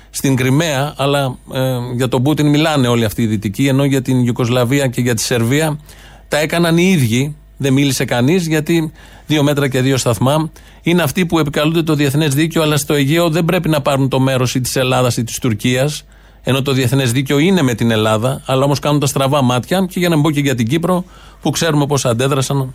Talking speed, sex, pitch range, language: 210 wpm, male, 120-150 Hz, Greek